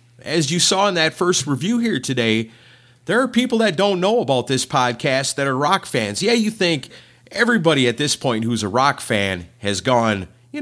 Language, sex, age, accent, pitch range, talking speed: English, male, 30-49, American, 120-185 Hz, 205 wpm